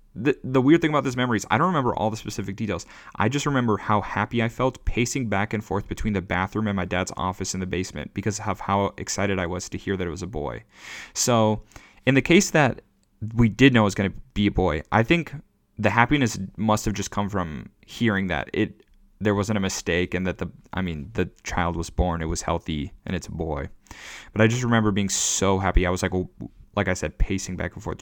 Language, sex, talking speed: English, male, 240 wpm